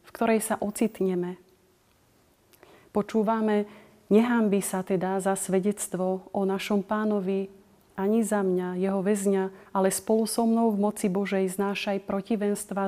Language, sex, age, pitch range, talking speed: Slovak, female, 30-49, 185-210 Hz, 125 wpm